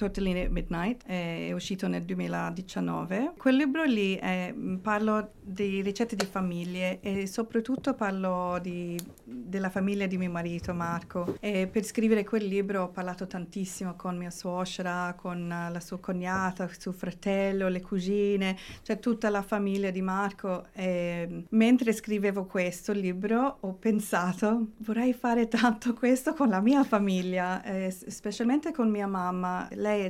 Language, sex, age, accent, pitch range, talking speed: Italian, female, 40-59, native, 185-225 Hz, 140 wpm